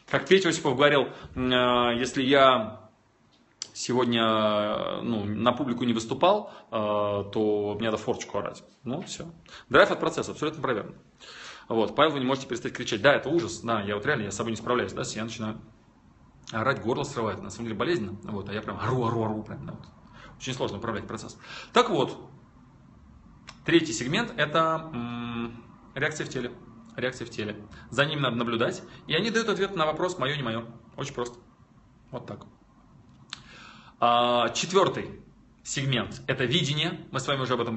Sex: male